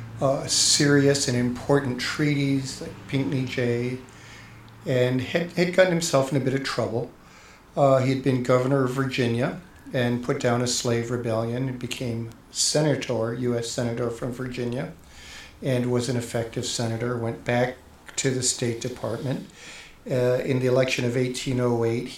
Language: English